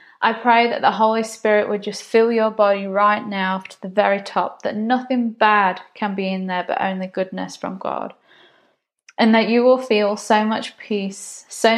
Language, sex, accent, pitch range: English, female, British, 195-225 Hz